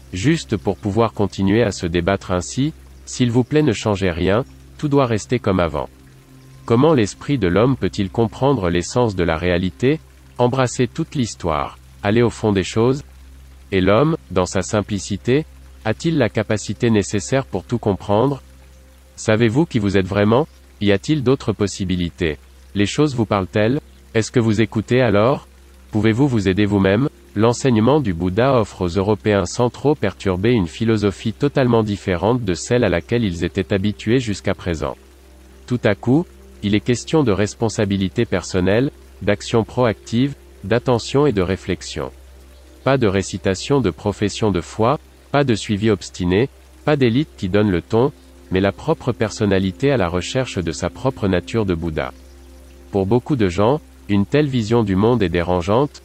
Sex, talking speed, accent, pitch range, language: male, 160 wpm, French, 90-120 Hz, French